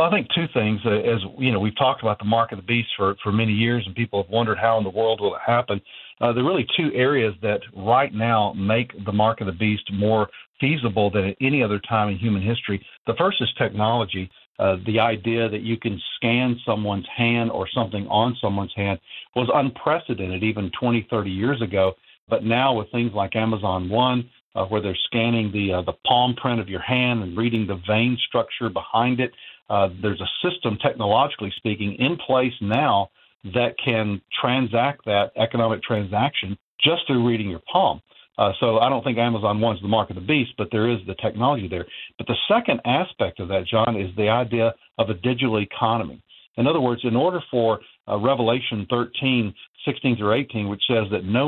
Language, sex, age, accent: English, male, 50-69, American